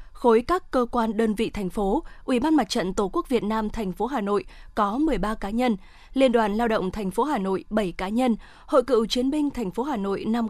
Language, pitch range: Vietnamese, 210-260 Hz